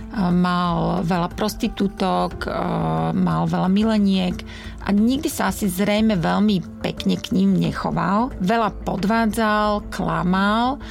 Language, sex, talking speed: Slovak, female, 105 wpm